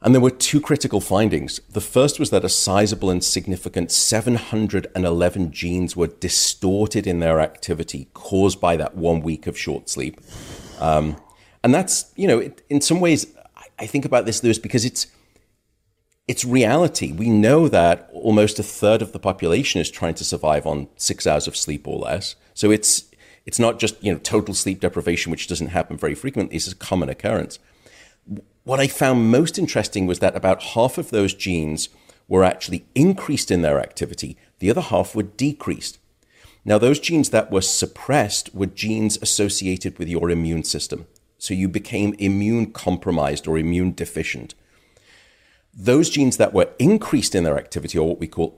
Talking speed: 175 wpm